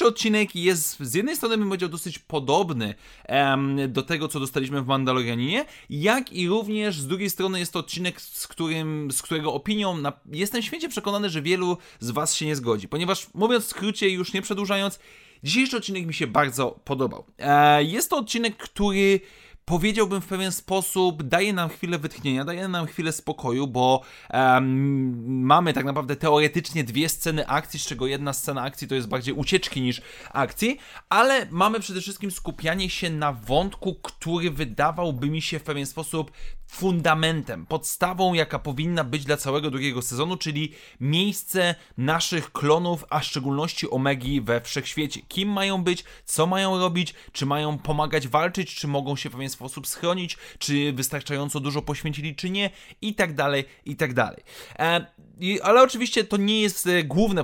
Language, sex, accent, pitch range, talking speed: Polish, male, native, 140-190 Hz, 160 wpm